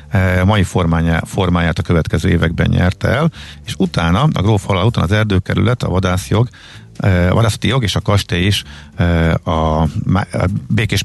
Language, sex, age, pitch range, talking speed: Hungarian, male, 50-69, 85-110 Hz, 140 wpm